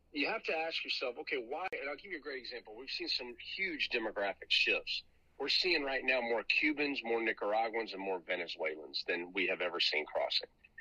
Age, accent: 50-69, American